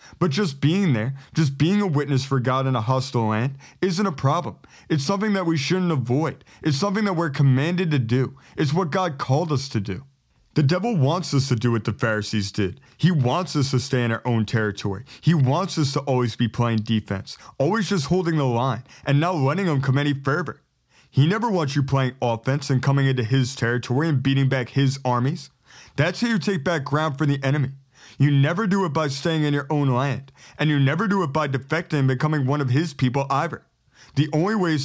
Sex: male